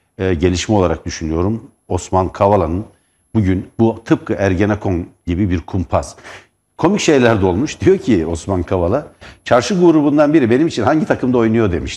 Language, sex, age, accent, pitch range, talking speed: Turkish, male, 60-79, native, 90-125 Hz, 150 wpm